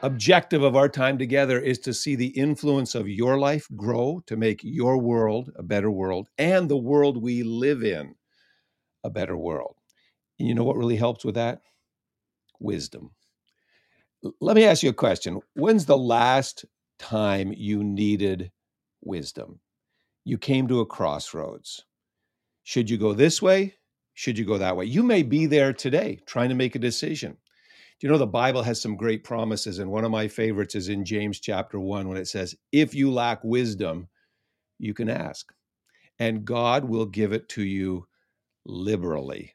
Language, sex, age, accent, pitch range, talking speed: English, male, 50-69, American, 110-135 Hz, 170 wpm